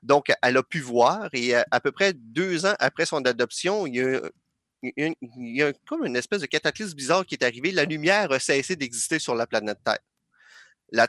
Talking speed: 205 wpm